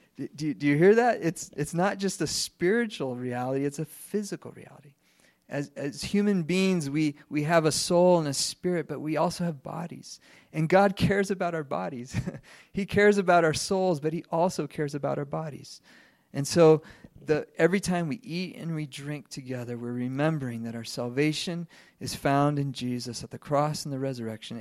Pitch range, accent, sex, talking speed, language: 135-170 Hz, American, male, 190 wpm, English